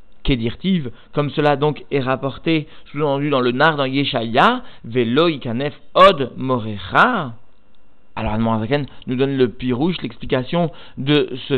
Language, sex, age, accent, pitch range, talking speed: French, male, 50-69, French, 120-150 Hz, 145 wpm